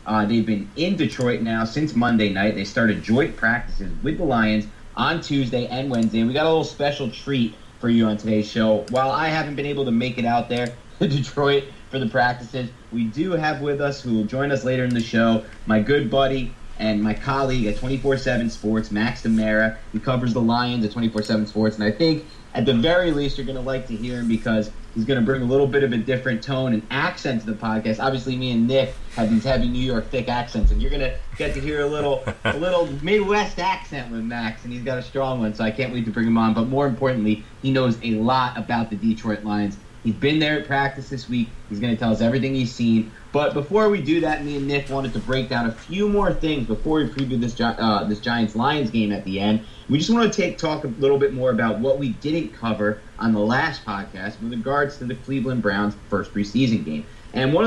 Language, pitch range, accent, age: English, 110-135 Hz, American, 30-49